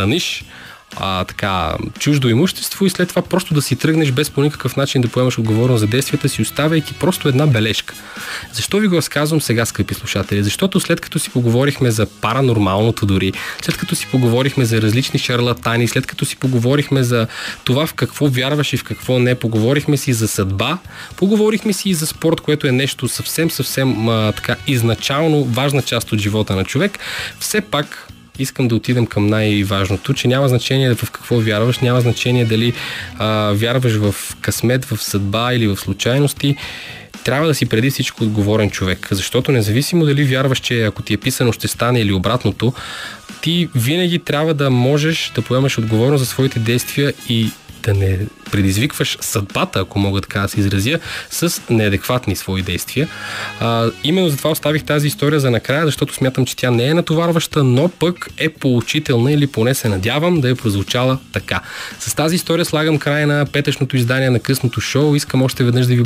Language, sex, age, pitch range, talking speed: Bulgarian, male, 20-39, 110-145 Hz, 175 wpm